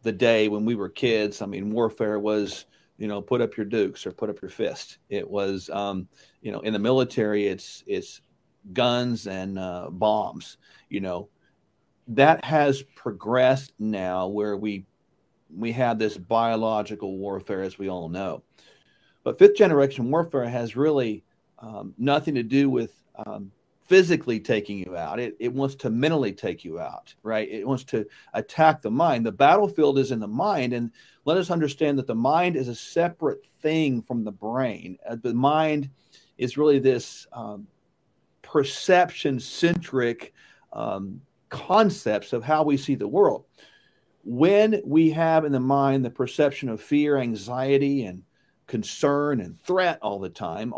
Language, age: English, 40-59